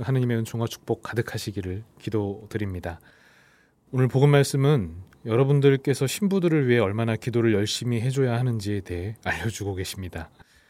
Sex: male